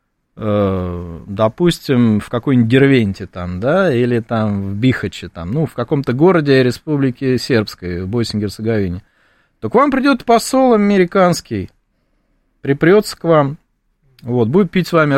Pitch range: 120-180 Hz